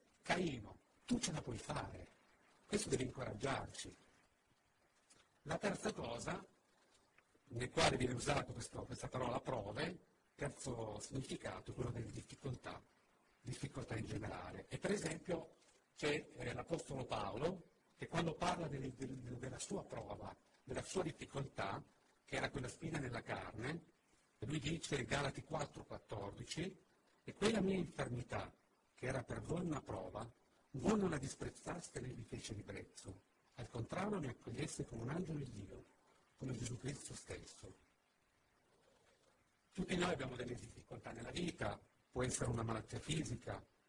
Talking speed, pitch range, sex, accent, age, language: 135 wpm, 115-150 Hz, male, native, 50-69, Italian